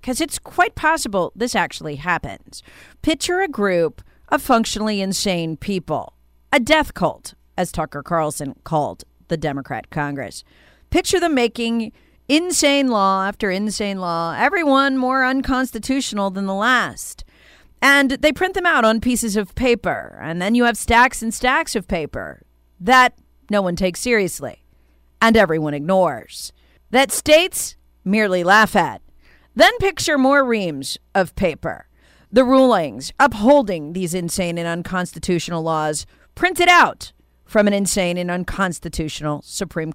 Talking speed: 135 wpm